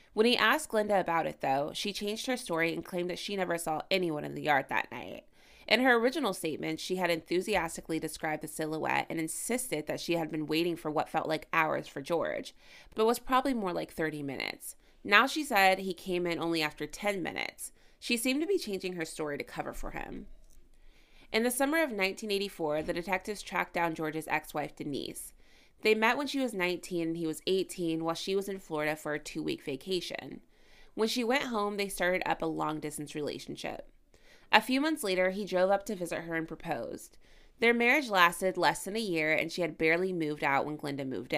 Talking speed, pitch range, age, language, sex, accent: 210 wpm, 160-220 Hz, 20-39, English, female, American